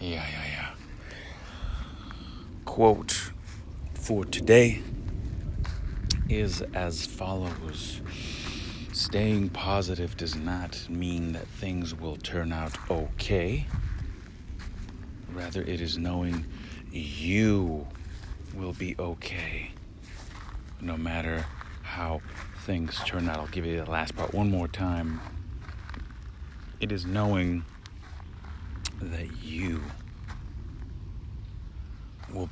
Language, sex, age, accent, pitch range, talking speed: English, male, 40-59, American, 80-95 Hz, 90 wpm